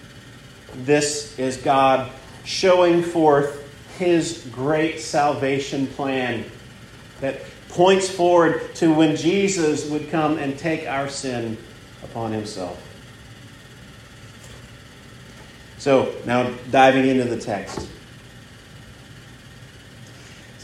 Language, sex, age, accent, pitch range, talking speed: English, male, 40-59, American, 125-180 Hz, 85 wpm